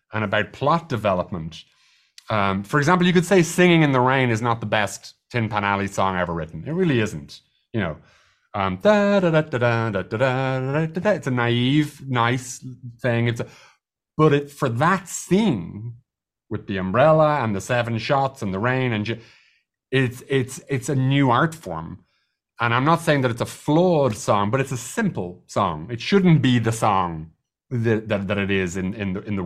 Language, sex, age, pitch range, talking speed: English, male, 30-49, 100-135 Hz, 185 wpm